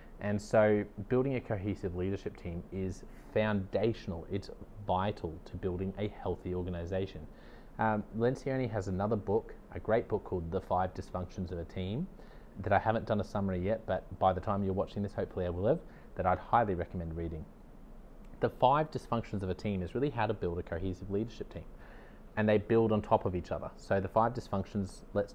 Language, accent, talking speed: English, Australian, 190 wpm